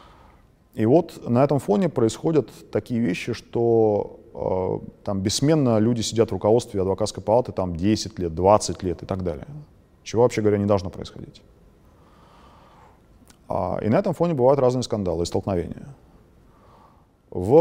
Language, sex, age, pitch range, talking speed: Russian, male, 30-49, 95-120 Hz, 140 wpm